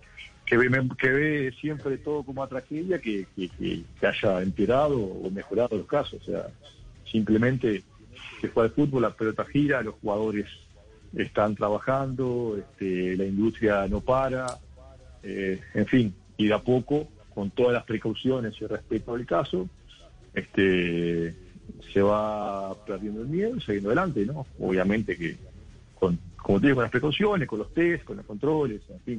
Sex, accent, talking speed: male, Argentinian, 155 wpm